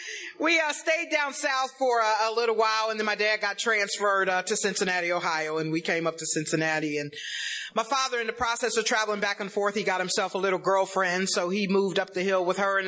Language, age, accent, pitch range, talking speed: English, 40-59, American, 185-245 Hz, 240 wpm